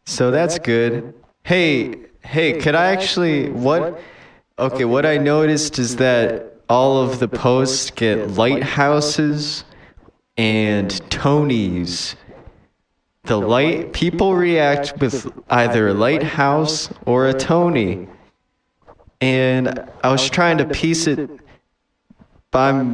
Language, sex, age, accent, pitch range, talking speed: English, male, 20-39, American, 115-150 Hz, 110 wpm